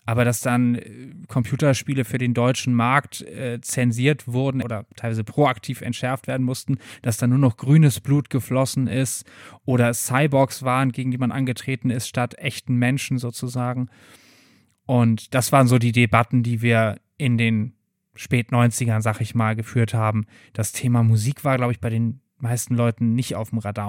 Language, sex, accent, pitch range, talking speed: German, male, German, 120-155 Hz, 170 wpm